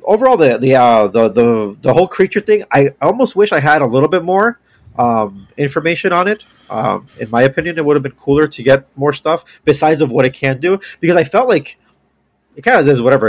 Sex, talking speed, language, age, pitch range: male, 230 wpm, English, 30-49, 115-165 Hz